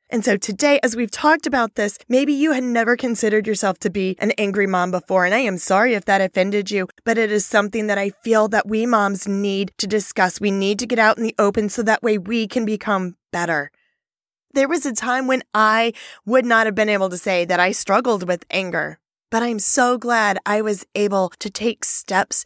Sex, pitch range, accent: female, 190-240 Hz, American